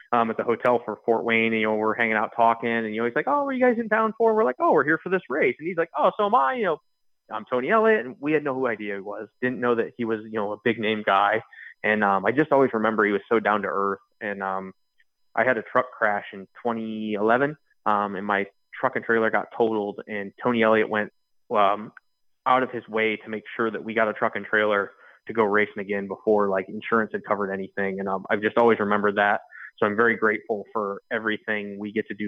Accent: American